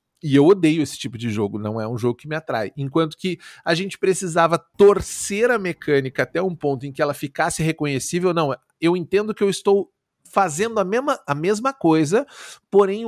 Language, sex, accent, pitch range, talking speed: Portuguese, male, Brazilian, 140-200 Hz, 195 wpm